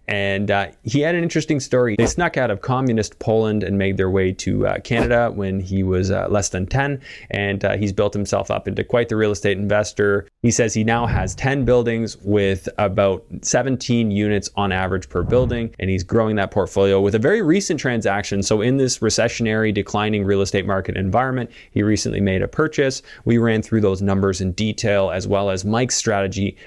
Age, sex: 20-39, male